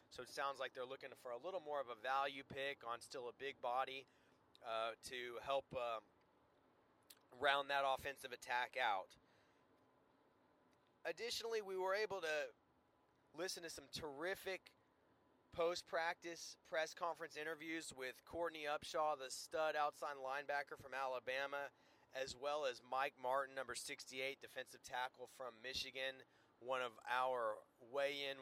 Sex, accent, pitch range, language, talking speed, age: male, American, 130-160 Hz, English, 135 wpm, 30-49